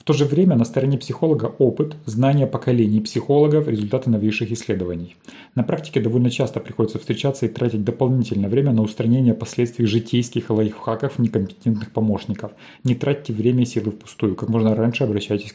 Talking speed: 160 wpm